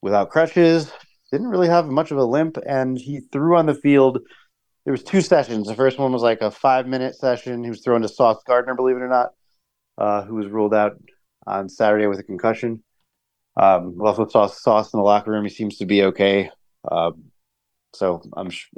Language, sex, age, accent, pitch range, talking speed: English, male, 30-49, American, 105-135 Hz, 210 wpm